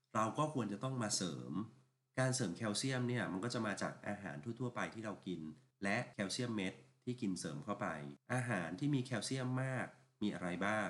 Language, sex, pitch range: Thai, male, 95-125 Hz